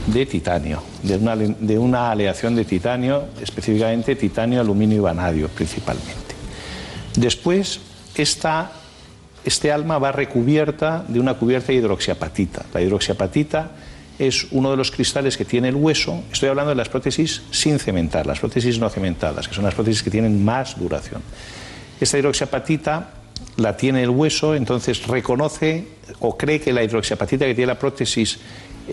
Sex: male